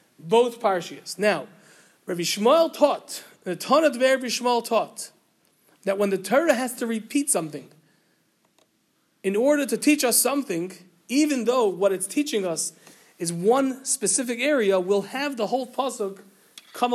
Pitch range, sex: 195-260 Hz, male